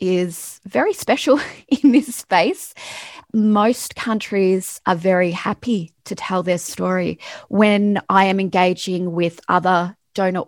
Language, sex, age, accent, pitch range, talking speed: English, female, 20-39, Australian, 180-220 Hz, 125 wpm